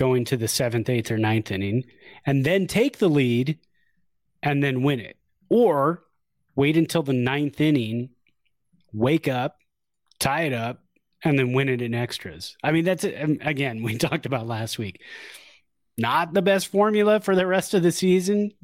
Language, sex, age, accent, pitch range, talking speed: English, male, 30-49, American, 115-155 Hz, 170 wpm